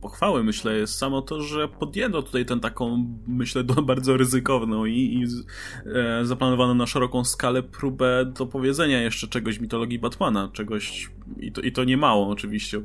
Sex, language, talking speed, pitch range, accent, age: male, Polish, 165 wpm, 110-130 Hz, native, 20-39